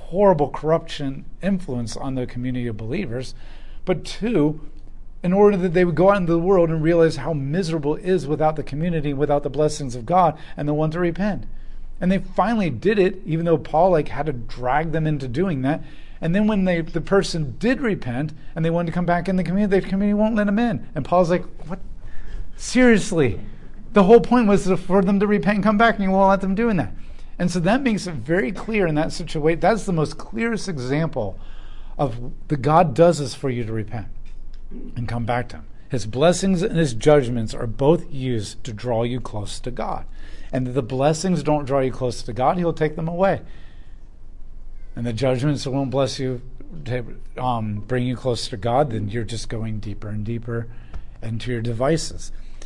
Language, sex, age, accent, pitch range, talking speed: English, male, 40-59, American, 125-185 Hz, 205 wpm